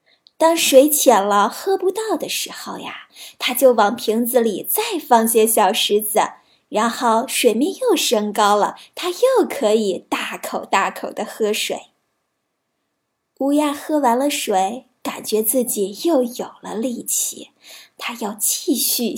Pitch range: 220-300 Hz